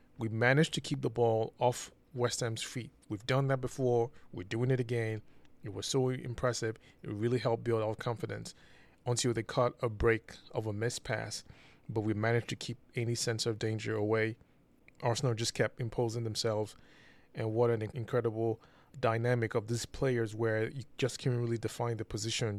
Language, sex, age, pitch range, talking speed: English, male, 20-39, 110-125 Hz, 180 wpm